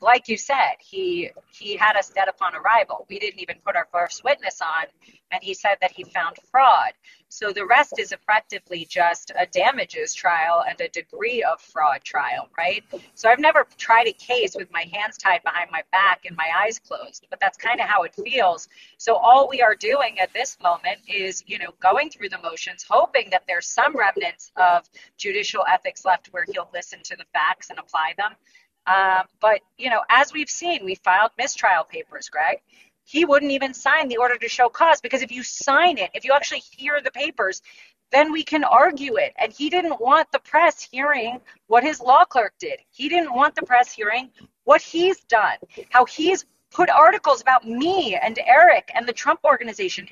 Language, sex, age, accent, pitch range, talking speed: English, female, 40-59, American, 205-330 Hz, 200 wpm